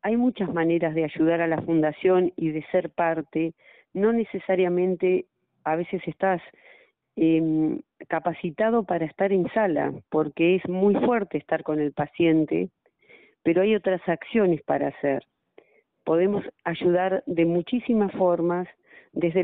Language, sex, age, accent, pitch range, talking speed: Spanish, female, 40-59, Argentinian, 160-200 Hz, 135 wpm